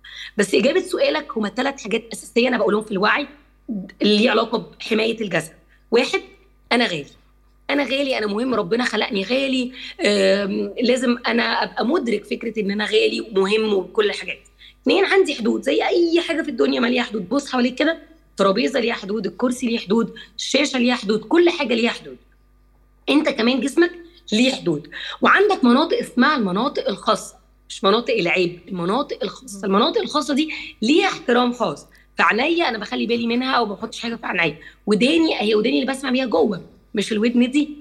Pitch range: 210-280 Hz